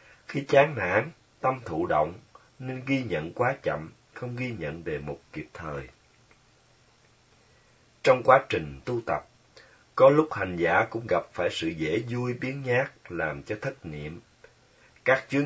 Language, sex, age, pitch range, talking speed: Vietnamese, male, 30-49, 100-135 Hz, 160 wpm